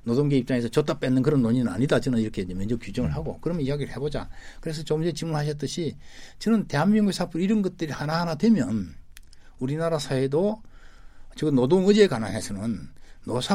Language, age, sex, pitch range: Korean, 60-79, male, 105-165 Hz